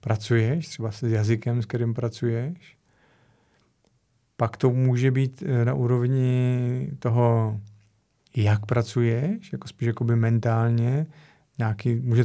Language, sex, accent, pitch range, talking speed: Czech, male, native, 115-140 Hz, 100 wpm